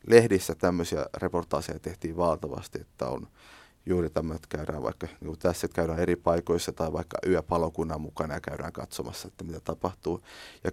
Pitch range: 85-95 Hz